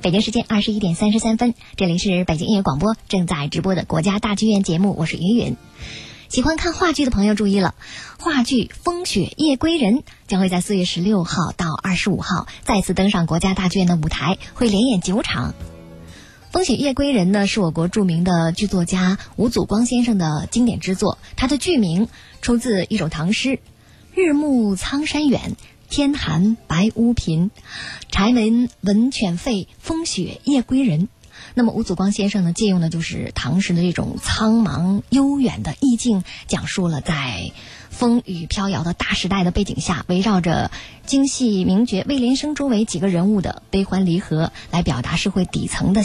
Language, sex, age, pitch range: Chinese, male, 20-39, 175-235 Hz